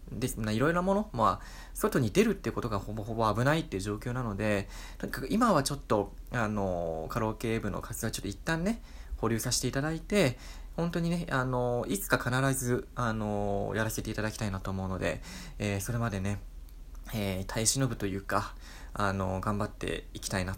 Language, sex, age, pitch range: Japanese, male, 20-39, 95-130 Hz